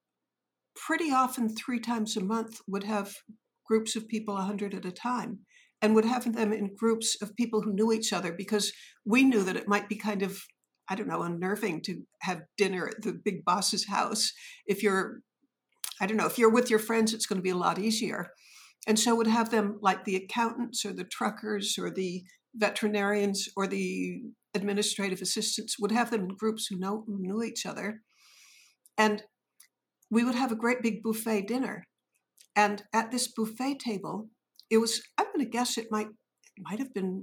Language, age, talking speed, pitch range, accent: English, 60-79, 195 wpm, 200-230 Hz, American